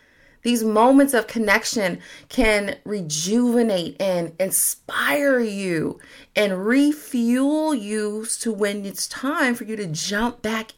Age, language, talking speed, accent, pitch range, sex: 30-49, English, 120 wpm, American, 195-260 Hz, female